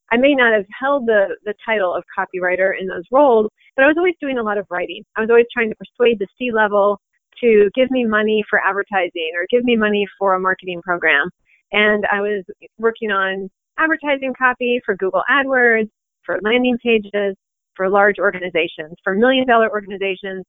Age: 30-49